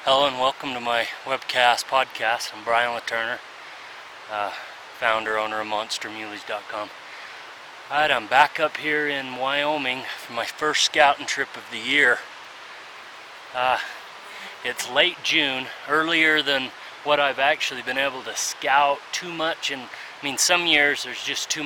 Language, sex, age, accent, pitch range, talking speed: English, male, 30-49, American, 120-150 Hz, 145 wpm